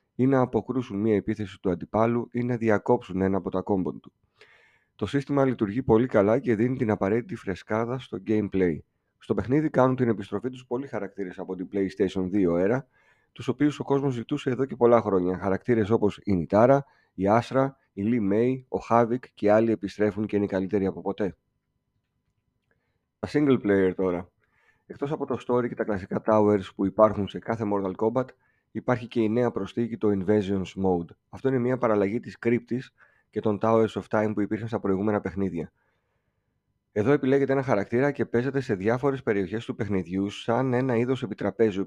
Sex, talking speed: male, 180 wpm